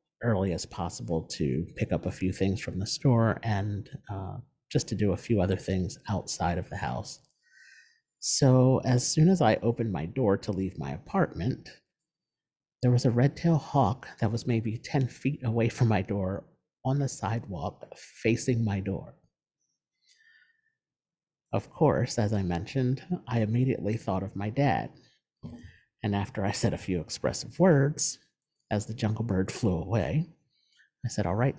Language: English